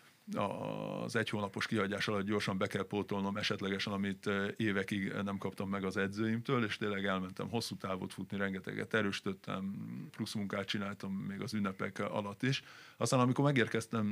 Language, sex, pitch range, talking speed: Hungarian, male, 100-115 Hz, 155 wpm